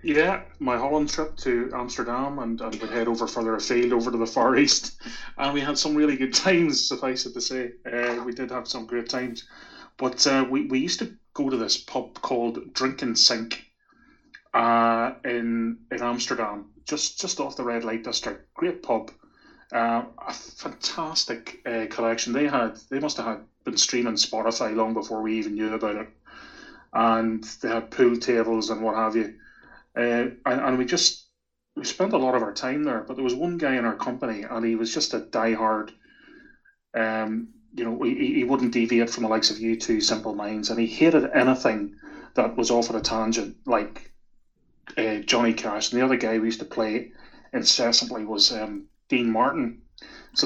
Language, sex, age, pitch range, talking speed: English, male, 30-49, 115-135 Hz, 195 wpm